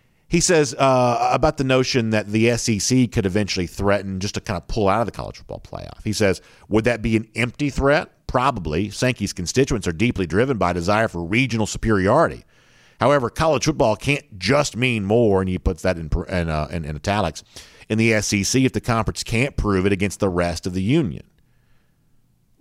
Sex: male